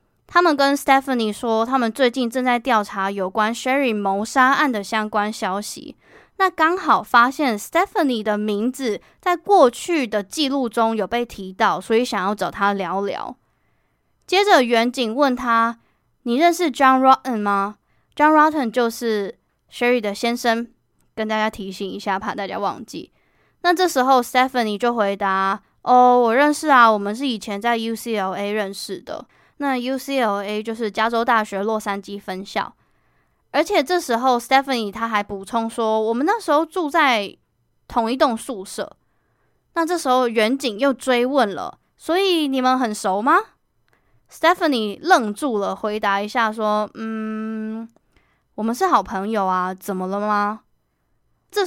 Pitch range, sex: 210-270 Hz, female